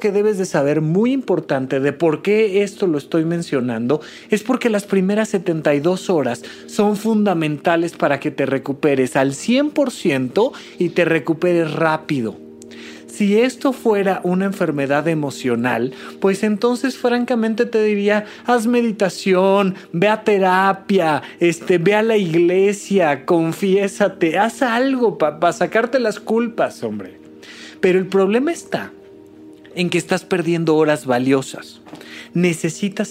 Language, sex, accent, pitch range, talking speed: Spanish, male, Mexican, 155-215 Hz, 125 wpm